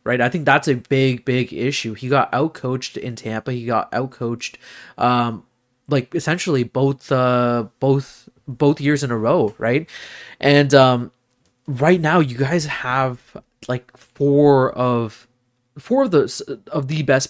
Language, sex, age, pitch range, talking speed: English, male, 20-39, 120-145 Hz, 155 wpm